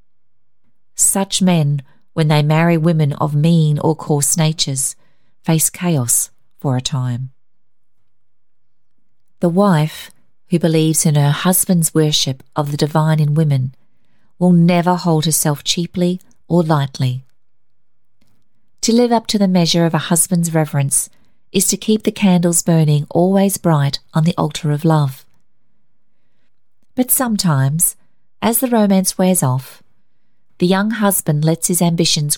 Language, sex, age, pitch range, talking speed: English, female, 40-59, 145-185 Hz, 135 wpm